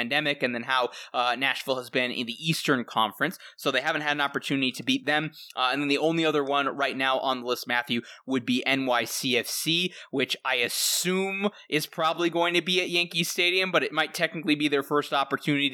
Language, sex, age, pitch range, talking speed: English, male, 20-39, 125-150 Hz, 215 wpm